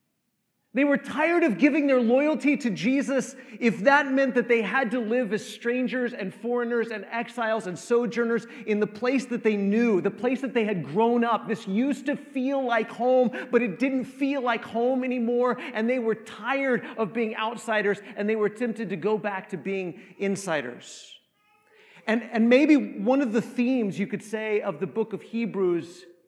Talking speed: 190 wpm